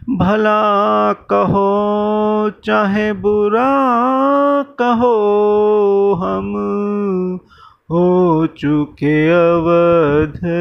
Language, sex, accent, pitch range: Hindi, male, native, 125-170 Hz